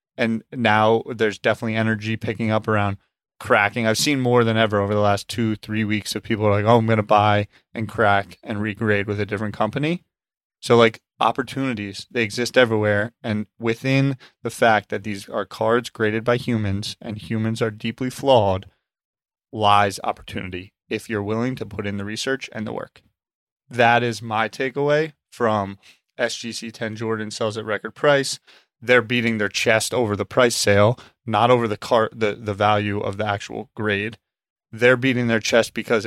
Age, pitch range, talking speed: 20-39, 105-120 Hz, 180 wpm